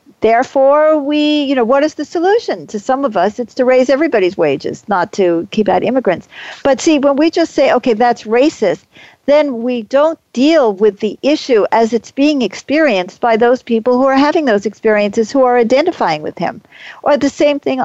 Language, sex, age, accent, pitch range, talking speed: English, female, 50-69, American, 230-300 Hz, 200 wpm